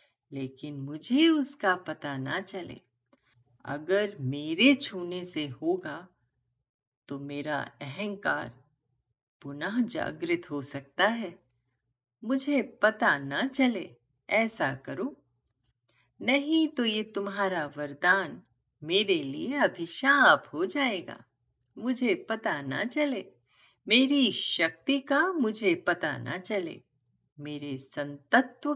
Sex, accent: female, native